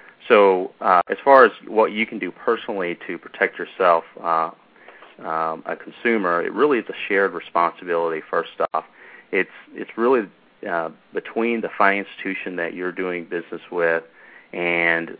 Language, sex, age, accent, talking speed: English, male, 40-59, American, 155 wpm